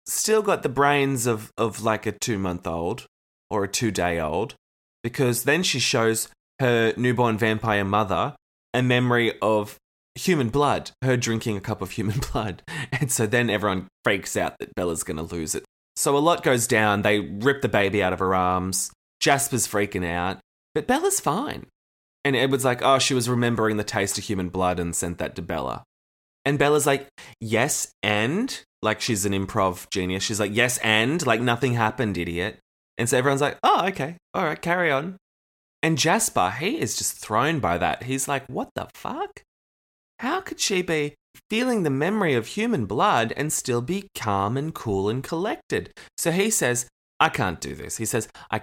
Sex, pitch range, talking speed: male, 100-135 Hz, 185 wpm